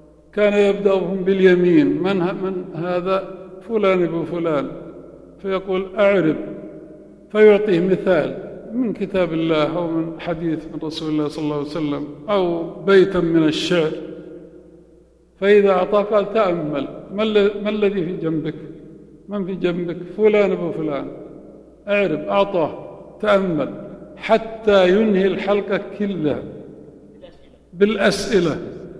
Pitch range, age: 160-195 Hz, 50-69